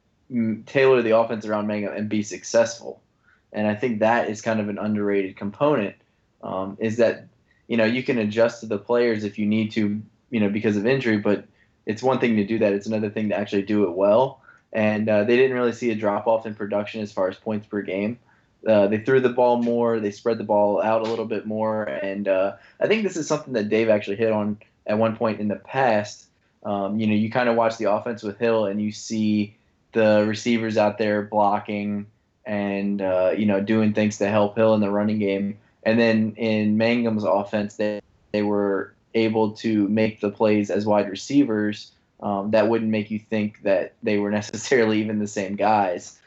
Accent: American